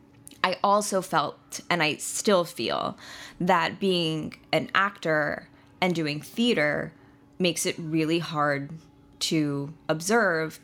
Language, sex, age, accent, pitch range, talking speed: English, female, 20-39, American, 145-180 Hz, 115 wpm